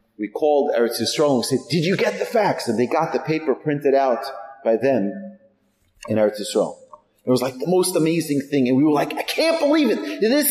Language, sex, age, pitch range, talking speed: English, male, 30-49, 115-185 Hz, 215 wpm